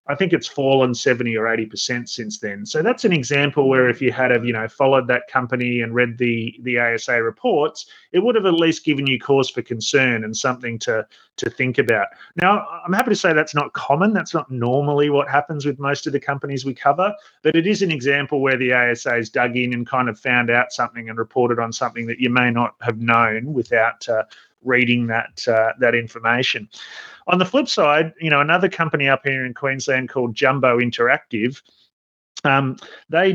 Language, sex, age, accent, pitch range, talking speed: English, male, 30-49, Australian, 120-145 Hz, 210 wpm